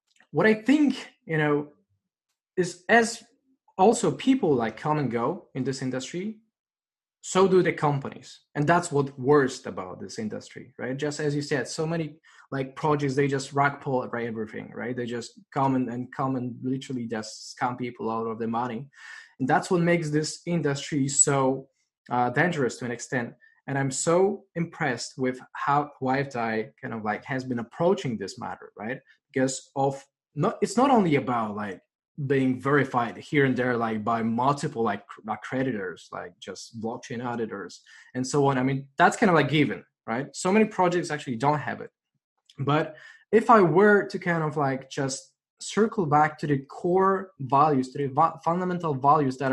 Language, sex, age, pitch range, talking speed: English, male, 20-39, 130-170 Hz, 175 wpm